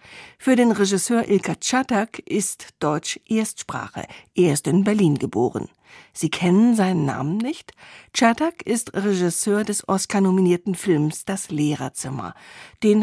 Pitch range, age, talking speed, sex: 170-220 Hz, 50-69, 125 wpm, female